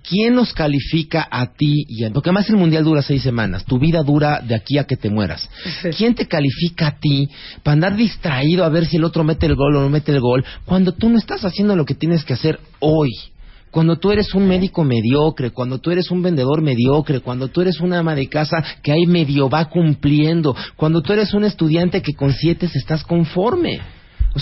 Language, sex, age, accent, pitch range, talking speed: Spanish, male, 40-59, Mexican, 130-170 Hz, 215 wpm